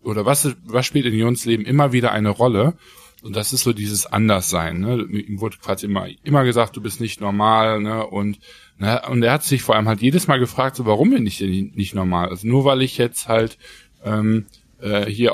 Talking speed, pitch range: 225 wpm, 105-125 Hz